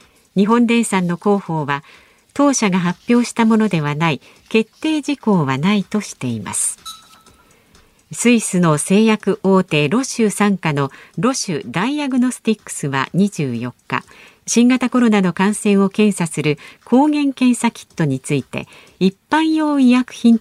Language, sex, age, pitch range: Japanese, female, 50-69, 160-235 Hz